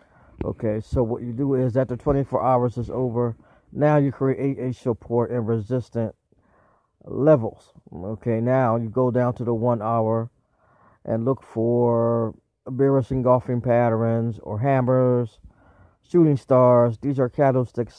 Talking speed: 135 wpm